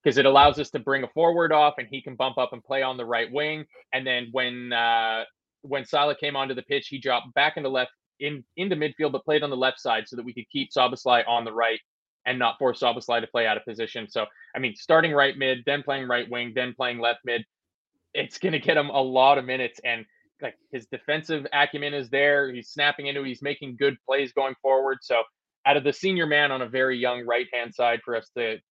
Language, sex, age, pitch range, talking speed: English, male, 20-39, 120-145 Hz, 245 wpm